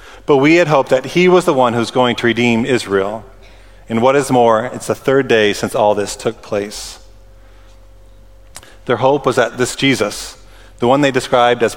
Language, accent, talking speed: English, American, 195 wpm